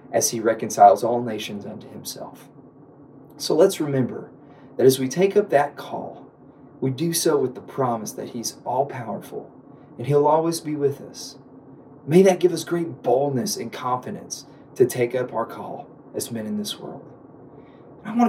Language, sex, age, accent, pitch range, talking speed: English, male, 30-49, American, 130-170 Hz, 170 wpm